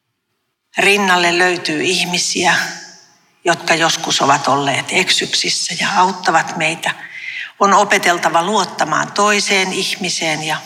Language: Finnish